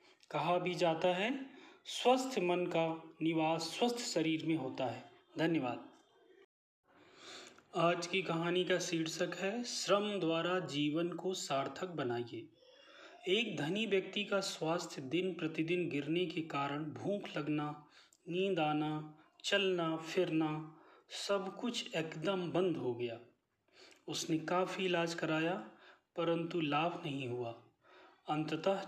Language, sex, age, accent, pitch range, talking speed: Hindi, male, 30-49, native, 155-195 Hz, 120 wpm